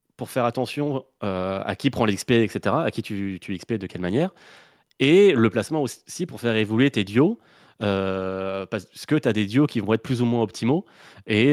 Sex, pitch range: male, 100-135 Hz